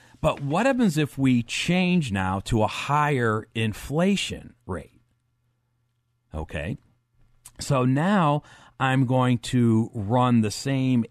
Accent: American